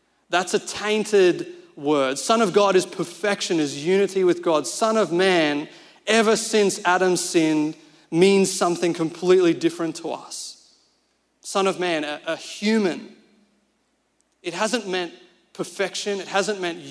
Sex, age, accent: male, 30-49, Australian